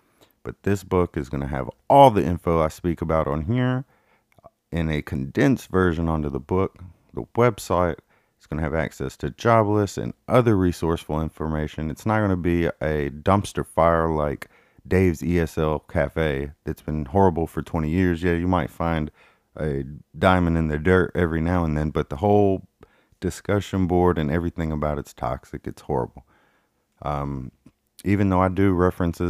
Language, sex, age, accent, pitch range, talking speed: English, male, 30-49, American, 75-100 Hz, 175 wpm